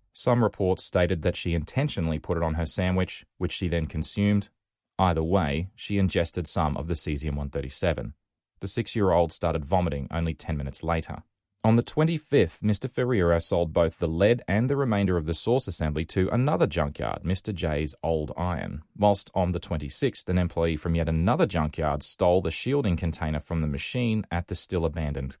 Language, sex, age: English, male, 30-49